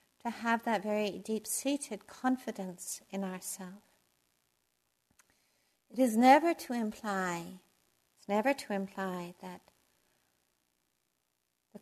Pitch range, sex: 185-220 Hz, female